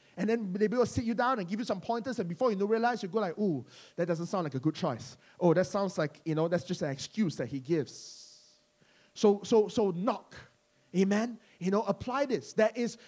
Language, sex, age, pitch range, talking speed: English, male, 20-39, 185-255 Hz, 235 wpm